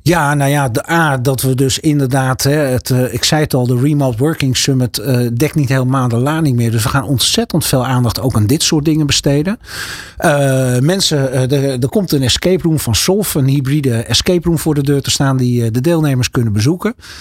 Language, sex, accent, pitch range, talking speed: Dutch, male, Dutch, 120-150 Hz, 210 wpm